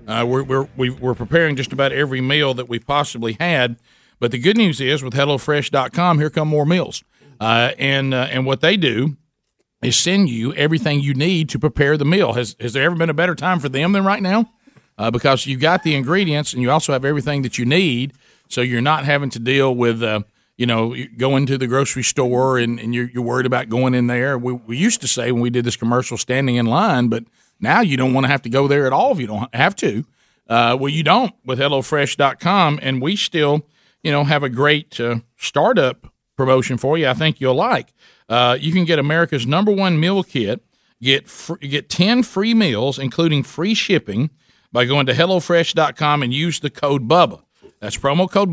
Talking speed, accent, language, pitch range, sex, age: 215 wpm, American, English, 125-165 Hz, male, 40-59